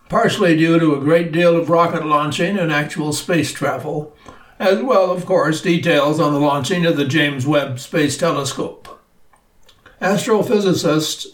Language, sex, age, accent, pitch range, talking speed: English, male, 60-79, American, 160-195 Hz, 150 wpm